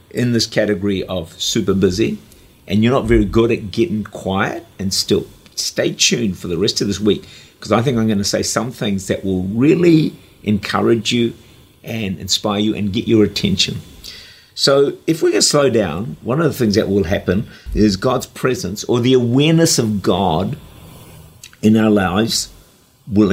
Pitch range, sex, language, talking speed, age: 105-130 Hz, male, English, 185 wpm, 50-69